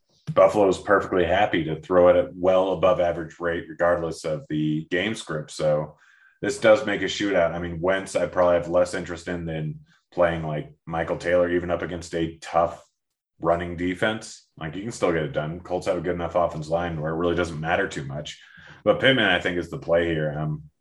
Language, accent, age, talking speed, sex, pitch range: English, American, 30-49, 215 wpm, male, 80-90 Hz